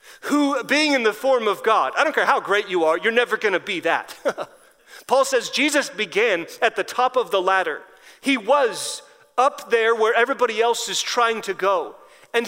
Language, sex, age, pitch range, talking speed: English, male, 30-49, 225-290 Hz, 200 wpm